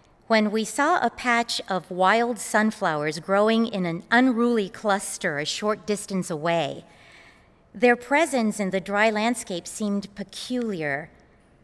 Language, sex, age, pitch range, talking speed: English, female, 40-59, 195-255 Hz, 130 wpm